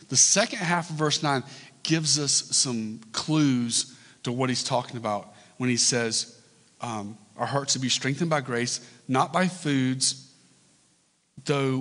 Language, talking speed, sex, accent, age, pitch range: English, 150 wpm, male, American, 40-59, 130-170 Hz